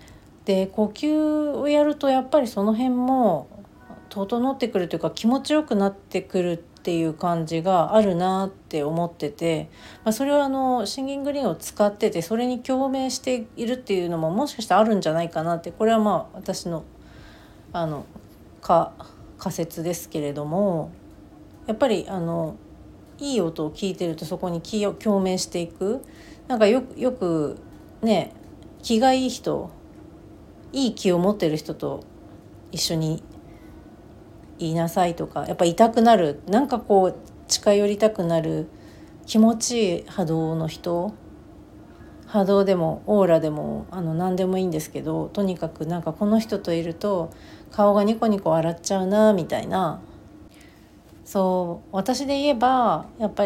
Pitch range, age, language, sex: 165-225 Hz, 40-59, Japanese, female